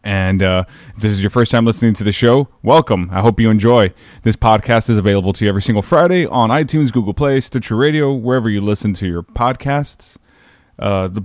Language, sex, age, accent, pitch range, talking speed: English, male, 30-49, American, 105-140 Hz, 215 wpm